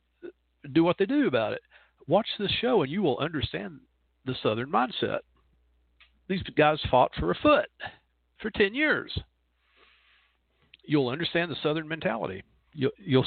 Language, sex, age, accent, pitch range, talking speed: English, male, 50-69, American, 105-165 Hz, 140 wpm